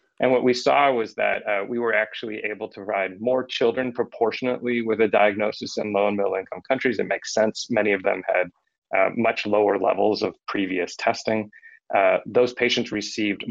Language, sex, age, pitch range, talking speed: English, male, 30-49, 100-120 Hz, 190 wpm